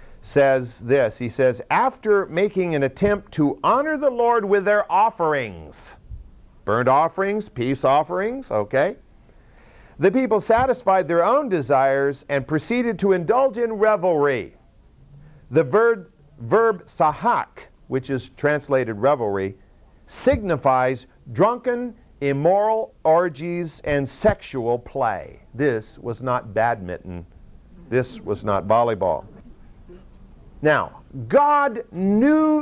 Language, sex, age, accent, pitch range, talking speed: English, male, 50-69, American, 135-225 Hz, 105 wpm